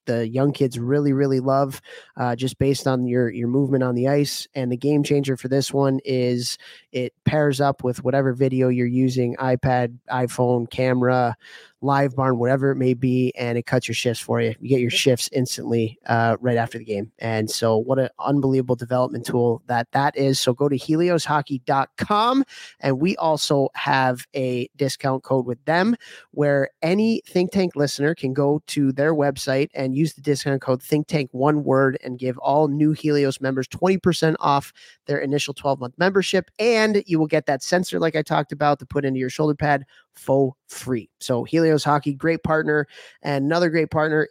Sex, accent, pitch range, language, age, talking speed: male, American, 125-150 Hz, English, 30-49, 190 wpm